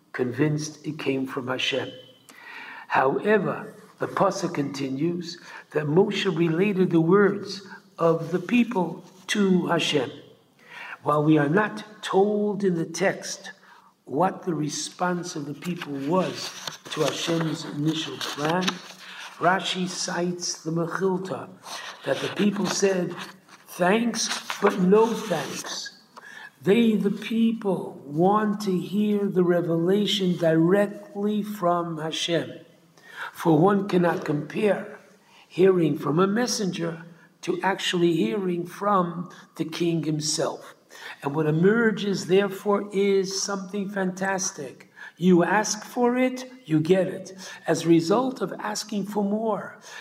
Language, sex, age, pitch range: English, male, 60-79, 170-200 Hz